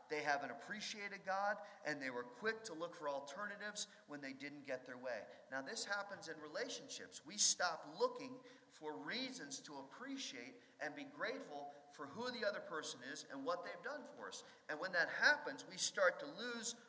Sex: male